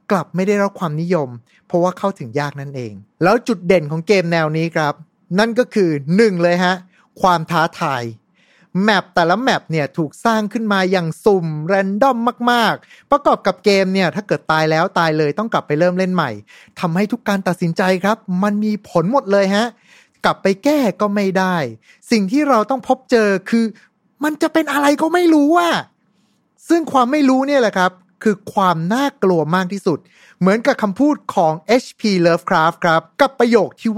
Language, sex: Thai, male